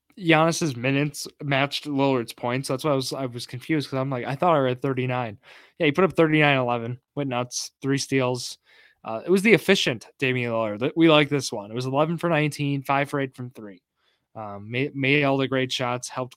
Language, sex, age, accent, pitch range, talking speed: English, male, 20-39, American, 120-145 Hz, 215 wpm